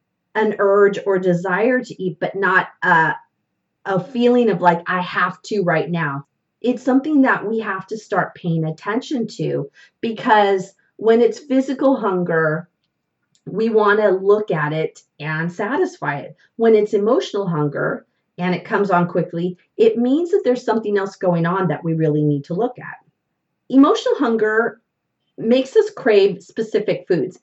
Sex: female